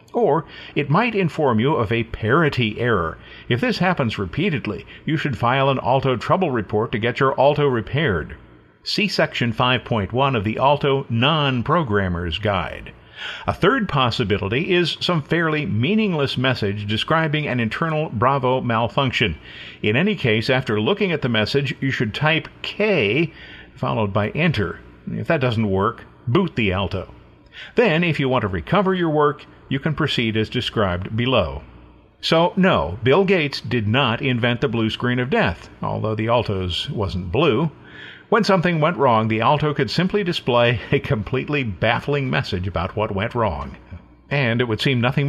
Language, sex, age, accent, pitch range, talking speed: English, male, 50-69, American, 105-150 Hz, 160 wpm